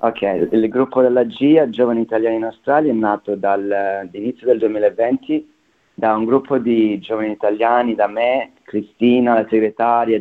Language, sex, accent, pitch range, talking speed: Italian, male, native, 100-120 Hz, 155 wpm